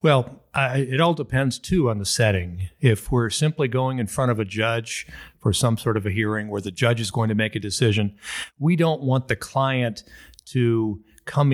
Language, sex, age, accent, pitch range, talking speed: English, male, 50-69, American, 105-140 Hz, 205 wpm